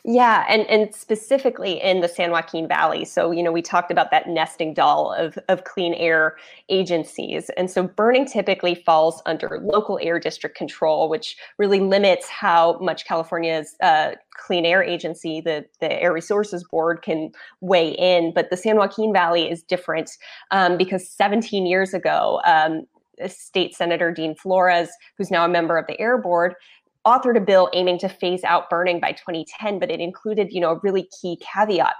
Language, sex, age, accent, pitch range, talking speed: English, female, 20-39, American, 170-205 Hz, 180 wpm